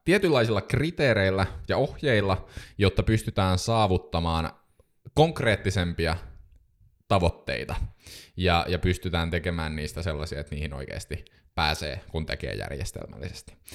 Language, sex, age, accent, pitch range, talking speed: Finnish, male, 20-39, native, 90-115 Hz, 95 wpm